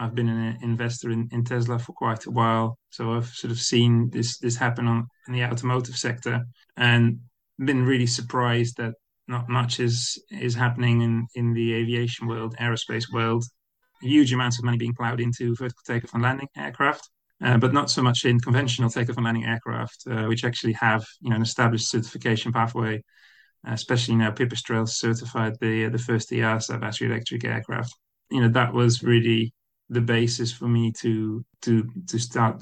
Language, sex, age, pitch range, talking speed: English, male, 30-49, 115-120 Hz, 185 wpm